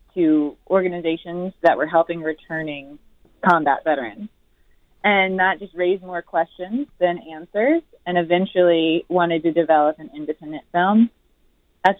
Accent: American